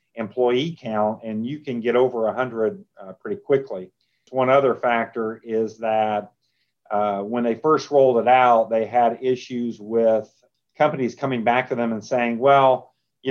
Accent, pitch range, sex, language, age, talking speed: American, 115-130 Hz, male, English, 40-59, 160 wpm